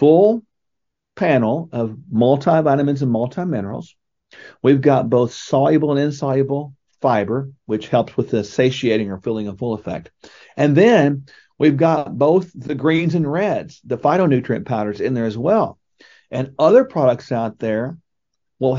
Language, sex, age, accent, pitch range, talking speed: English, male, 50-69, American, 125-165 Hz, 145 wpm